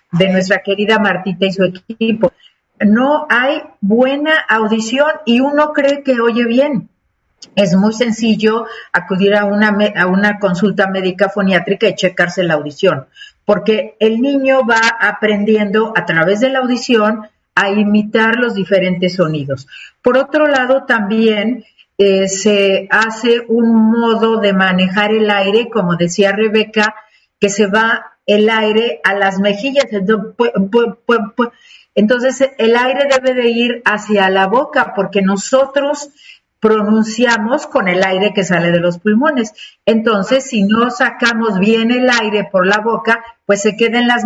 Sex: female